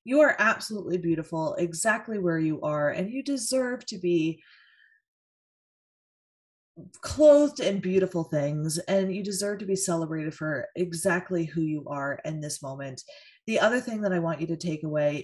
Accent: American